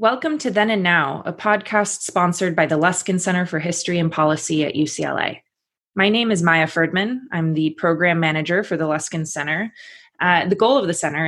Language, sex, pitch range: English, female, 165-195 Hz